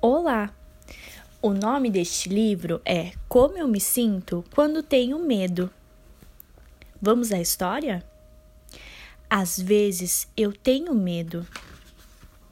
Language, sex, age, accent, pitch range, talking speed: Portuguese, female, 10-29, Brazilian, 195-270 Hz, 100 wpm